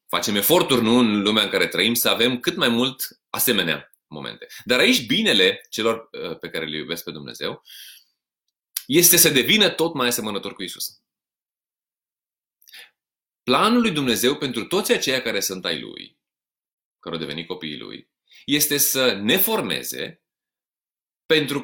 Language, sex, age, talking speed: Romanian, male, 30-49, 145 wpm